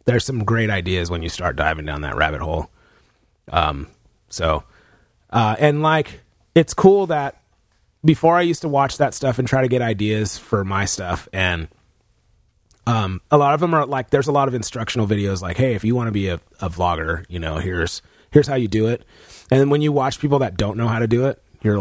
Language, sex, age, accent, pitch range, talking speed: English, male, 30-49, American, 95-135 Hz, 225 wpm